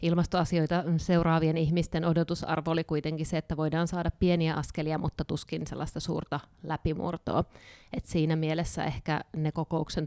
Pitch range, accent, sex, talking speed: 155-165 Hz, native, female, 135 wpm